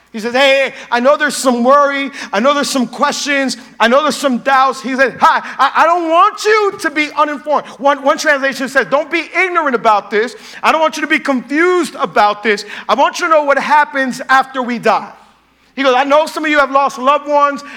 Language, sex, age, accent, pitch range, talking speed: English, male, 40-59, American, 250-295 Hz, 225 wpm